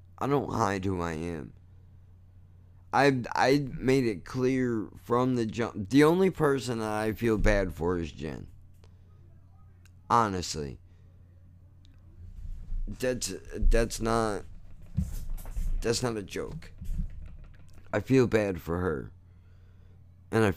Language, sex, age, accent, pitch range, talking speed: English, male, 50-69, American, 90-110 Hz, 115 wpm